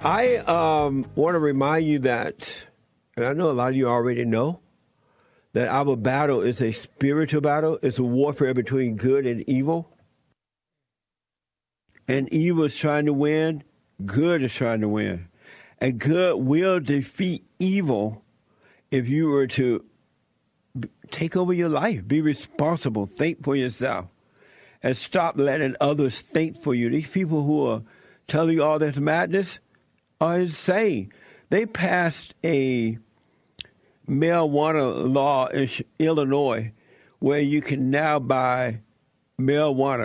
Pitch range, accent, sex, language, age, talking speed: 130-165 Hz, American, male, English, 60-79, 135 wpm